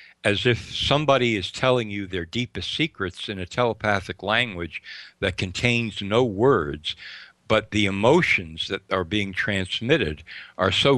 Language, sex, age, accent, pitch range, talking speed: English, male, 60-79, American, 90-115 Hz, 140 wpm